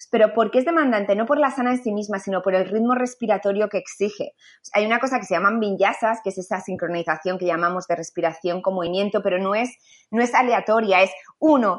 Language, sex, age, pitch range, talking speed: Spanish, female, 20-39, 190-230 Hz, 225 wpm